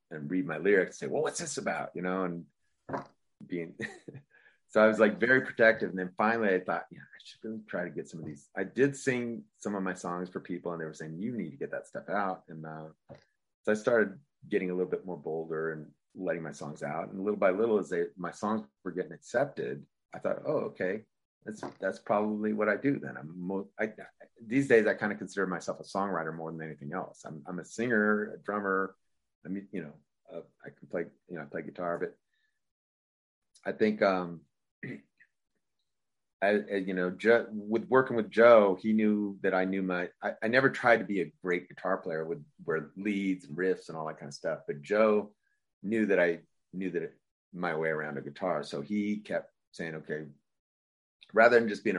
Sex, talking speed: male, 220 wpm